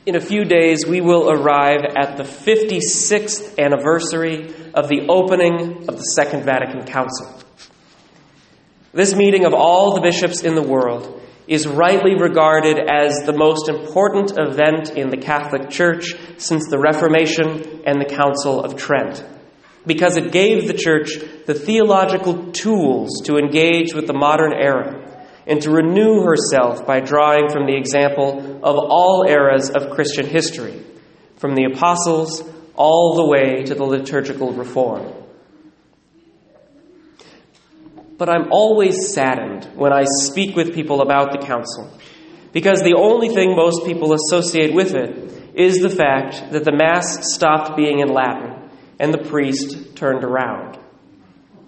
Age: 30-49